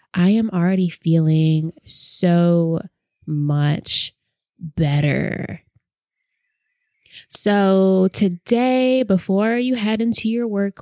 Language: English